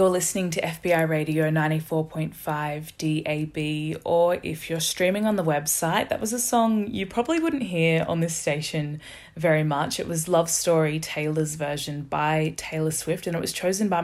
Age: 20-39